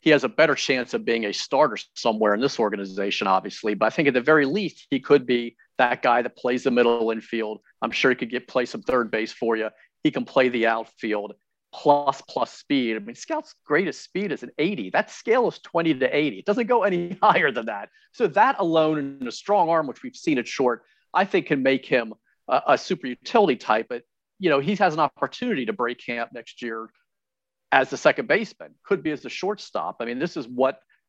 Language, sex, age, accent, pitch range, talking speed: English, male, 40-59, American, 115-145 Hz, 230 wpm